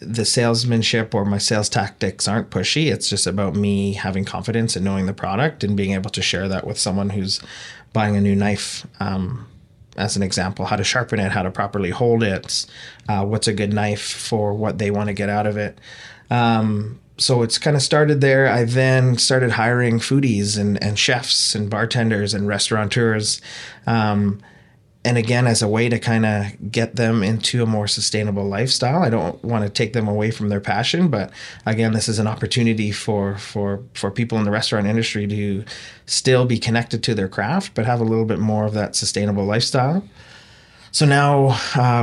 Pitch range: 105-120 Hz